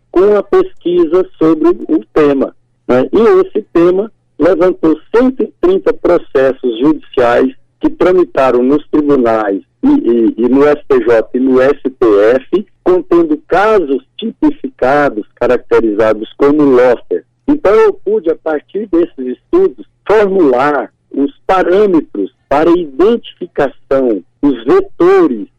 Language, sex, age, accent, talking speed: Portuguese, male, 50-69, Brazilian, 105 wpm